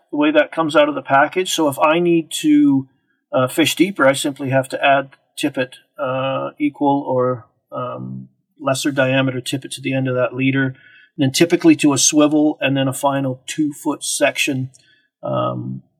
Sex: male